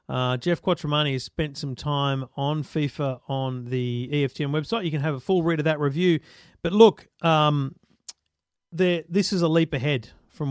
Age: 40-59